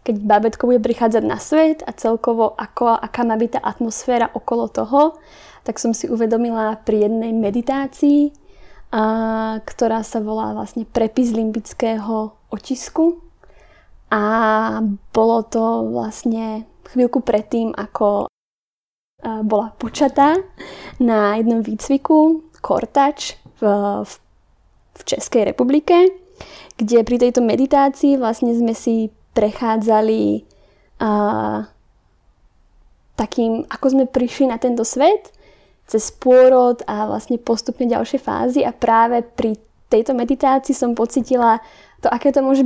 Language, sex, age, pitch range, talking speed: Slovak, female, 20-39, 220-270 Hz, 115 wpm